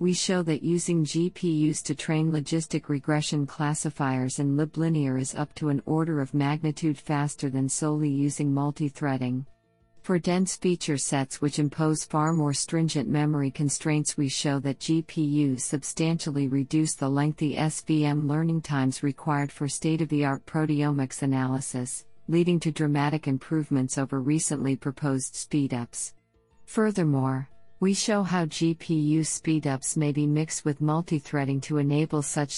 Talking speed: 135 wpm